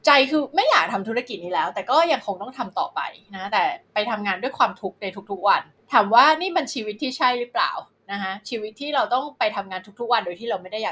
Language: Thai